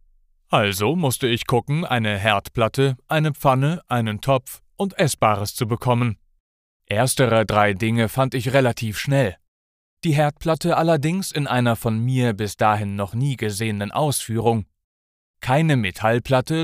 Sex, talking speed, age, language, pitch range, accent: male, 130 wpm, 30-49, German, 105-135 Hz, German